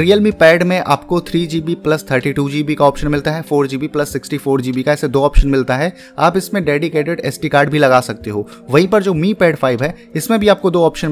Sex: male